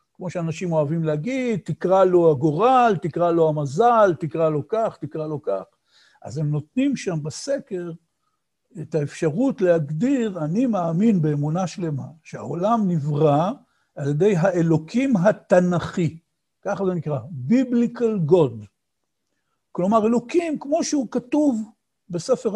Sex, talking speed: male, 120 wpm